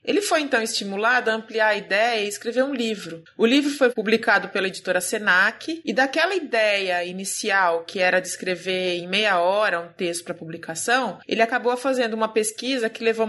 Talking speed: 185 wpm